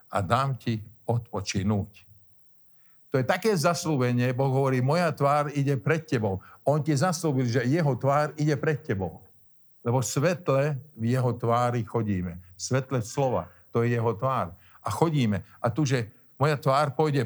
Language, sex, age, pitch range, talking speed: Slovak, male, 50-69, 105-140 Hz, 150 wpm